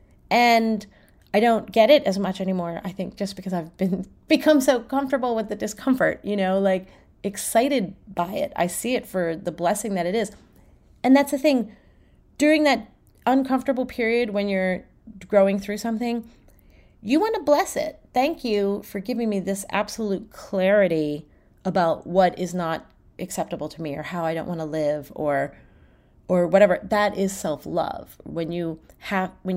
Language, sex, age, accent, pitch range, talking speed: English, female, 30-49, American, 170-225 Hz, 175 wpm